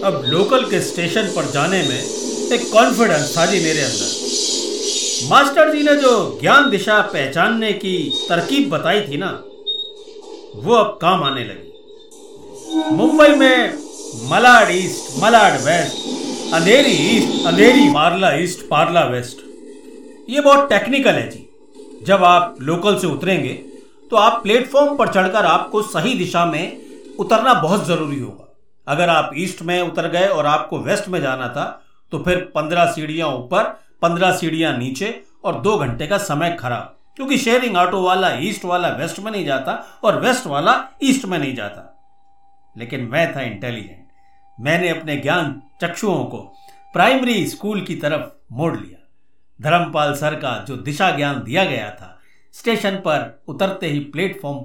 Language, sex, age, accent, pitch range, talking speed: Hindi, male, 50-69, native, 155-245 Hz, 150 wpm